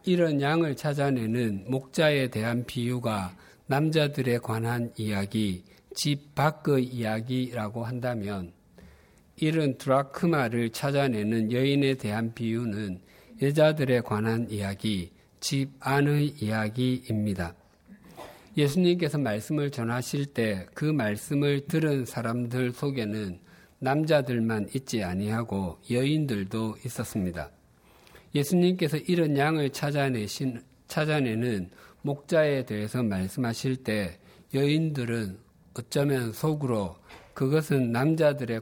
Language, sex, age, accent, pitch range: Korean, male, 50-69, native, 105-140 Hz